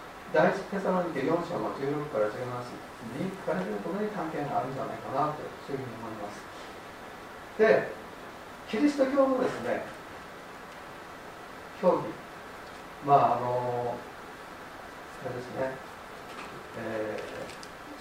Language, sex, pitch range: Japanese, male, 160-245 Hz